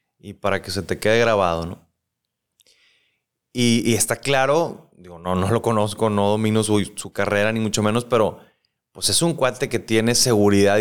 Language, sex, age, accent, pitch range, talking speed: Spanish, male, 30-49, Mexican, 105-125 Hz, 185 wpm